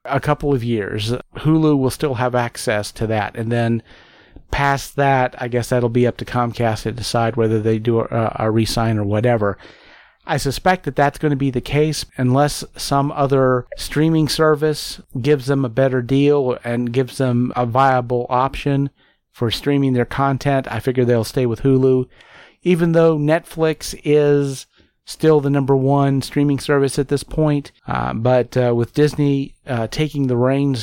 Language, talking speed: English, 175 wpm